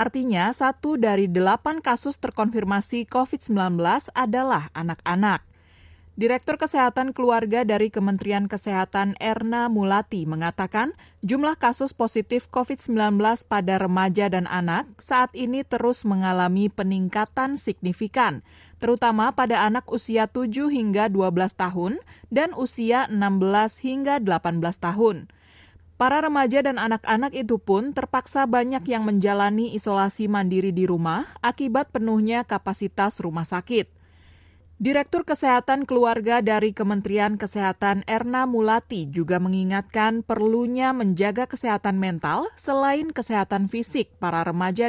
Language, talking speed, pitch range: Indonesian, 110 wpm, 200-250 Hz